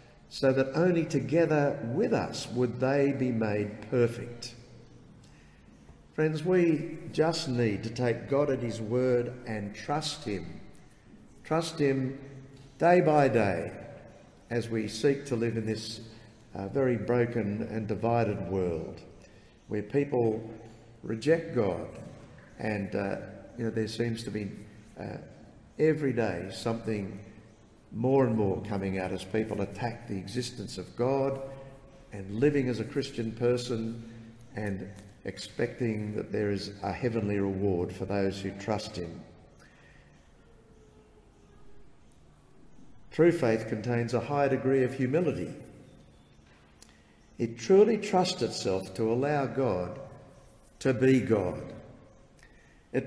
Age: 50-69